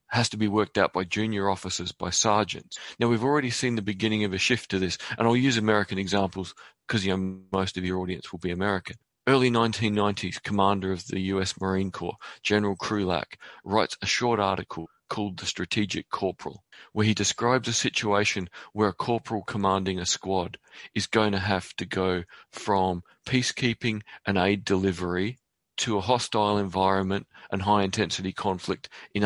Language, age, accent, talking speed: English, 40-59, Australian, 170 wpm